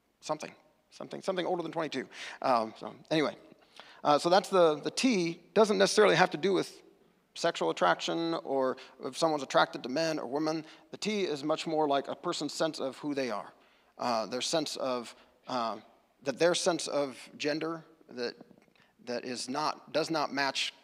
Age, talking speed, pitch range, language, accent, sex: 40-59, 175 wpm, 130-170 Hz, English, American, male